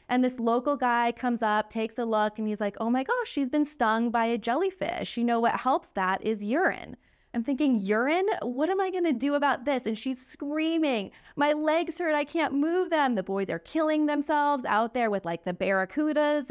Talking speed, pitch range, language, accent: 220 wpm, 205-290 Hz, English, American